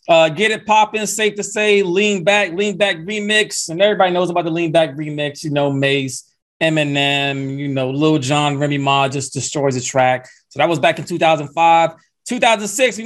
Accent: American